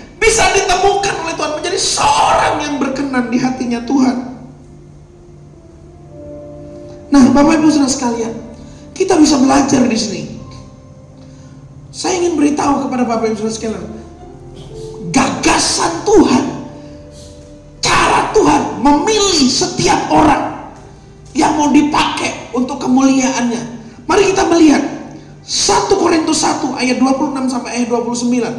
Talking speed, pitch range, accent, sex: 95 wpm, 255-370 Hz, native, male